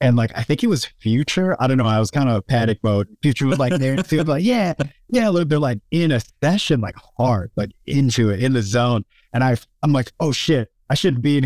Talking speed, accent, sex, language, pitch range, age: 265 wpm, American, male, English, 95-125 Hz, 30-49